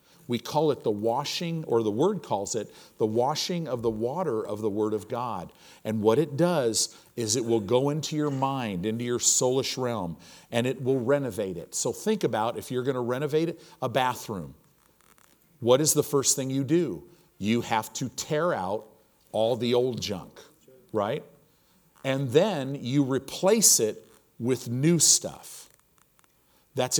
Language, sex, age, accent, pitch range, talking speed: English, male, 50-69, American, 110-145 Hz, 170 wpm